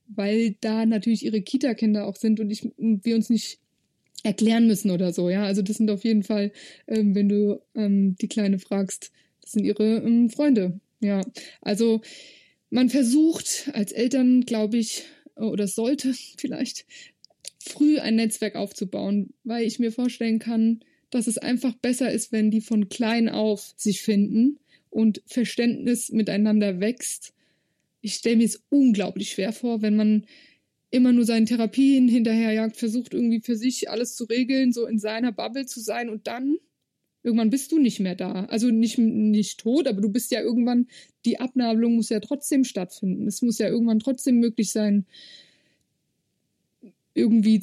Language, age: German, 20-39